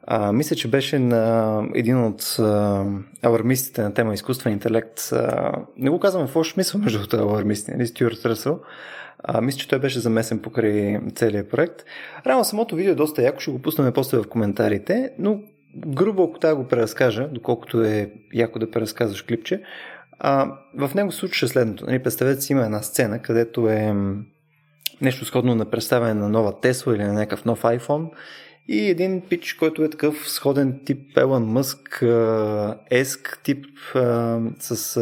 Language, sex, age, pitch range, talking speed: Bulgarian, male, 20-39, 115-155 Hz, 155 wpm